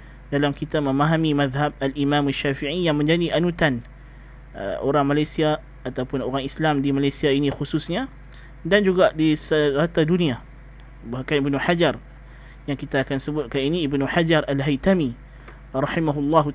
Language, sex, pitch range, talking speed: Malay, male, 140-165 Hz, 130 wpm